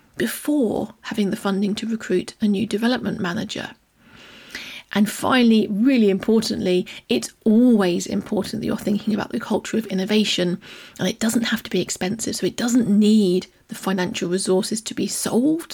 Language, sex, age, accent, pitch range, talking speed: English, female, 30-49, British, 195-240 Hz, 160 wpm